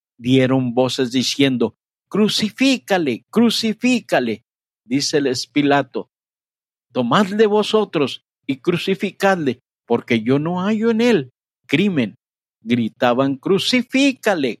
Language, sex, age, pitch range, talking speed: Spanish, male, 50-69, 130-205 Hz, 85 wpm